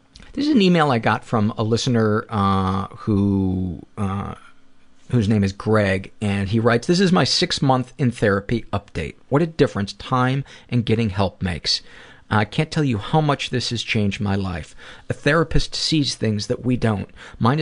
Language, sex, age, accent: English, male, 40-59, American